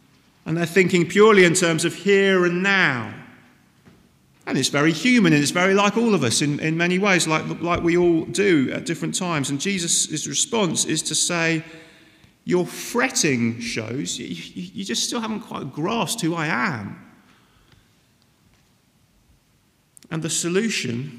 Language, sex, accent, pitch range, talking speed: English, male, British, 140-195 Hz, 155 wpm